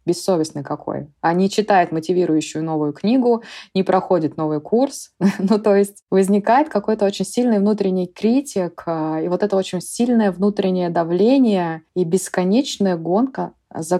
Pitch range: 175-215 Hz